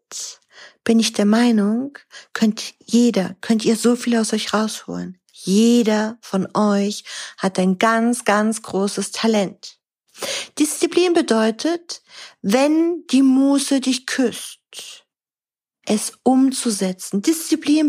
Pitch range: 200-255 Hz